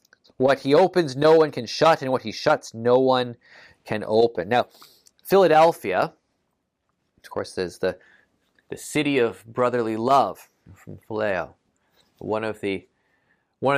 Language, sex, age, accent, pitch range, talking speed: English, male, 20-39, American, 115-145 Hz, 140 wpm